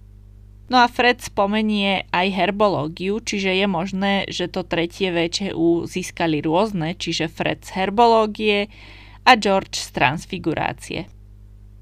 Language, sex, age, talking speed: Slovak, female, 20-39, 115 wpm